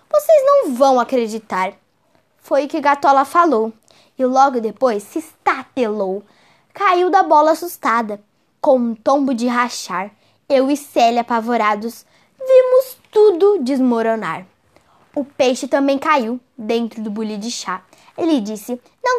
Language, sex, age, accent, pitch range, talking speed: Portuguese, female, 10-29, Brazilian, 230-360 Hz, 130 wpm